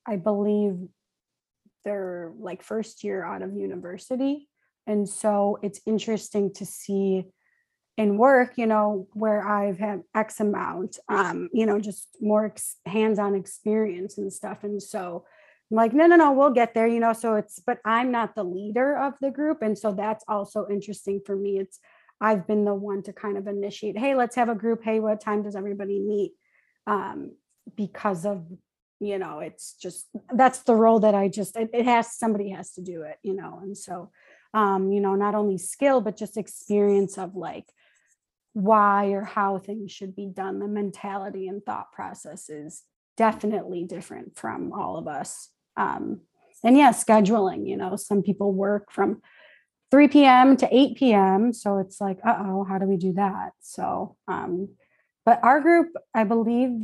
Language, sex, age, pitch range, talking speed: English, female, 30-49, 195-225 Hz, 175 wpm